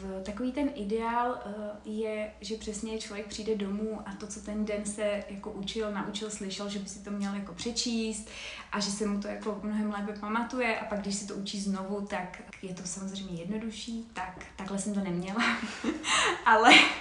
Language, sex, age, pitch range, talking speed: Czech, female, 20-39, 205-225 Hz, 185 wpm